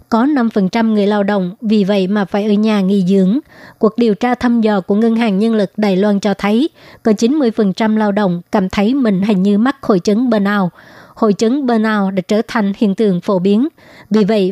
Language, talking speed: Vietnamese, 220 wpm